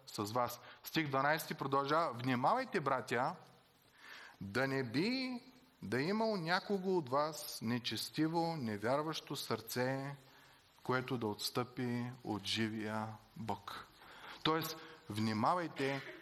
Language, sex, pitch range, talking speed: Bulgarian, male, 115-160 Hz, 95 wpm